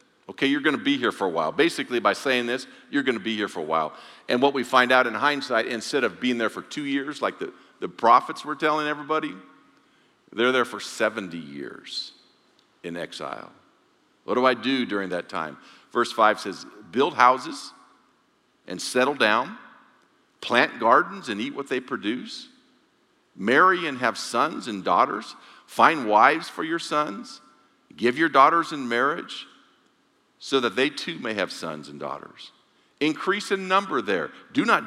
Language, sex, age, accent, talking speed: English, male, 50-69, American, 175 wpm